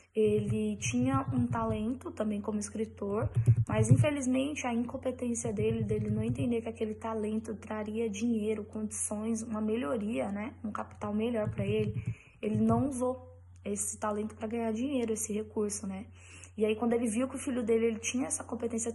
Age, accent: 10-29, Brazilian